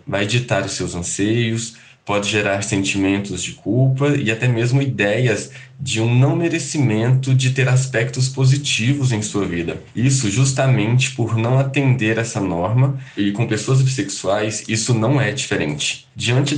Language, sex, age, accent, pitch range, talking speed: Portuguese, male, 20-39, Brazilian, 105-135 Hz, 150 wpm